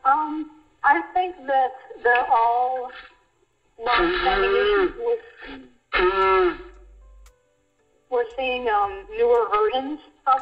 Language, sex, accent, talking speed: English, female, American, 90 wpm